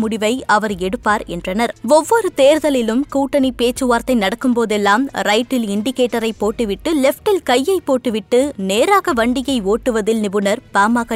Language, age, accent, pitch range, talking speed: Tamil, 20-39, native, 220-275 Hz, 110 wpm